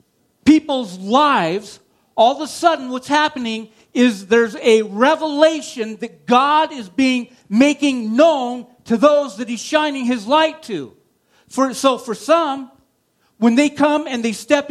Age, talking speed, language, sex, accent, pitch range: 50-69, 145 wpm, English, male, American, 235-295 Hz